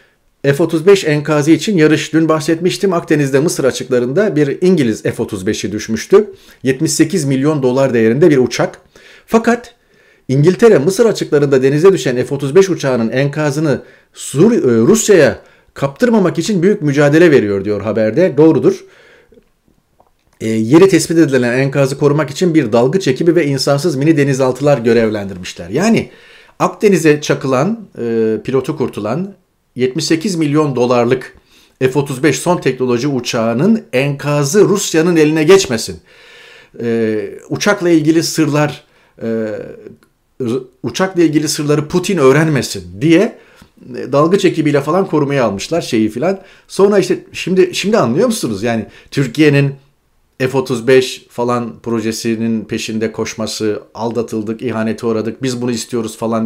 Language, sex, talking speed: Turkish, male, 115 wpm